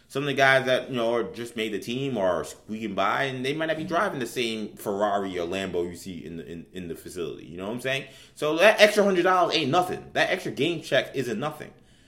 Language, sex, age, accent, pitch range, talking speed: English, male, 20-39, American, 105-140 Hz, 260 wpm